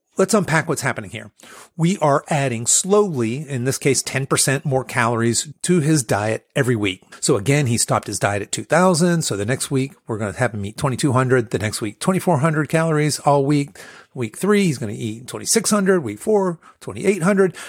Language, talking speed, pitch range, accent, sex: English, 190 wpm, 120-165 Hz, American, male